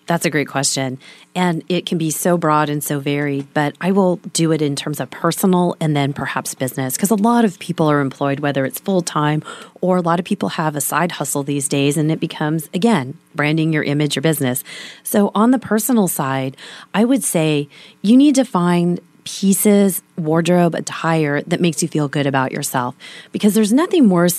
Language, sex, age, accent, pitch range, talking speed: English, female, 30-49, American, 150-200 Hz, 200 wpm